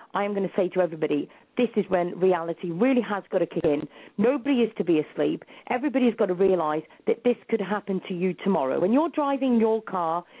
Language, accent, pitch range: English, British, 185-235 Hz